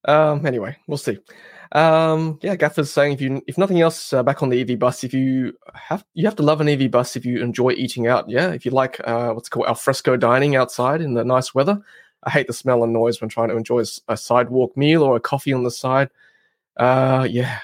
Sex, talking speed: male, 235 wpm